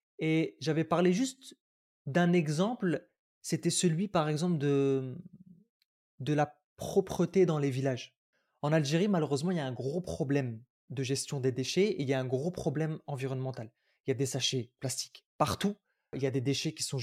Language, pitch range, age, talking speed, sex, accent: French, 140-190 Hz, 20-39, 185 wpm, male, French